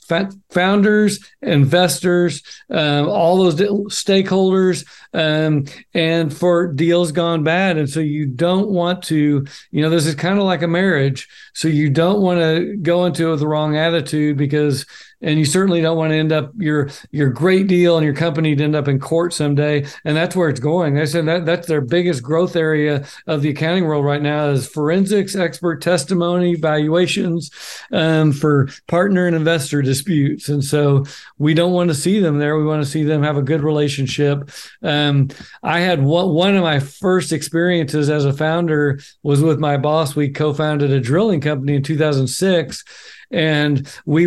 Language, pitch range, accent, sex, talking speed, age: English, 150-175 Hz, American, male, 185 wpm, 50-69